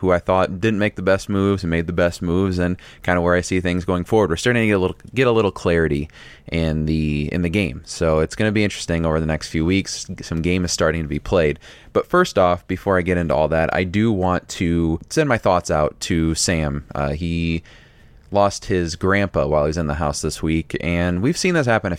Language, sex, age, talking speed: English, male, 30-49, 250 wpm